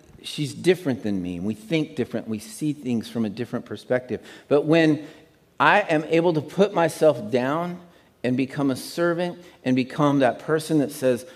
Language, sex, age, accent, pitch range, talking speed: English, male, 50-69, American, 115-155 Hz, 175 wpm